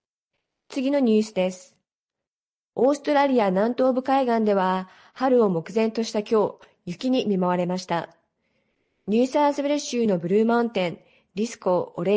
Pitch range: 190-250 Hz